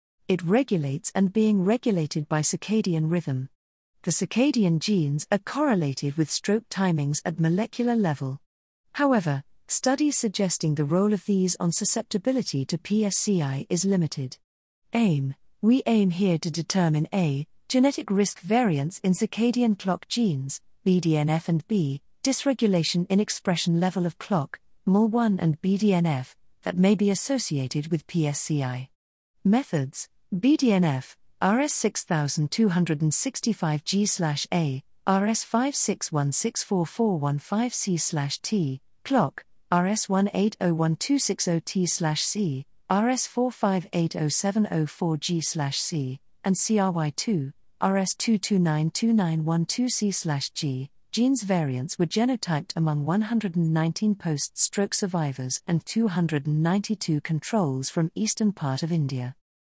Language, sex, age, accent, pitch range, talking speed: English, female, 40-59, British, 155-210 Hz, 90 wpm